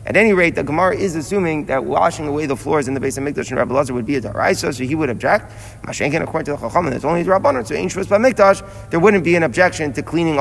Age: 30-49